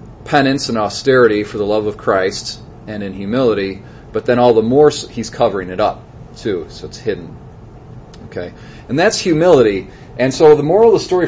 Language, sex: English, male